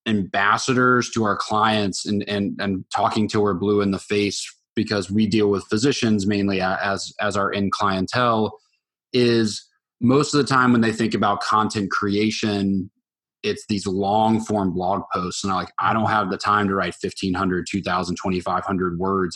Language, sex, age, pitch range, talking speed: English, male, 20-39, 100-115 Hz, 175 wpm